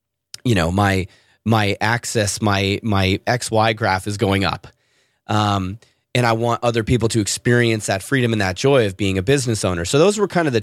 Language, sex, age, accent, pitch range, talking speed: English, male, 30-49, American, 100-120 Hz, 205 wpm